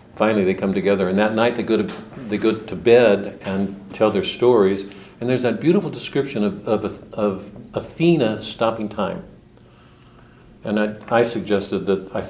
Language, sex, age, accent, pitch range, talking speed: English, male, 60-79, American, 100-120 Hz, 170 wpm